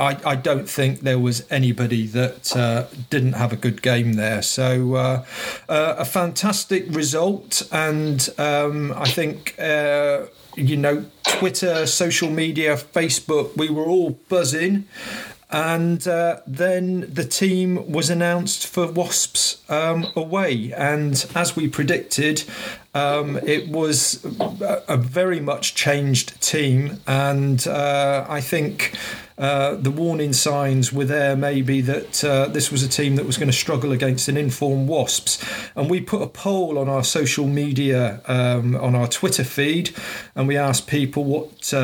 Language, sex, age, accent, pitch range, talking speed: English, male, 40-59, British, 135-160 Hz, 150 wpm